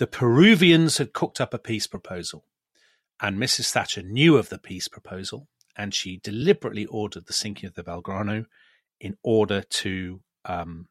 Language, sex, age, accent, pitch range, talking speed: English, male, 30-49, British, 105-140 Hz, 160 wpm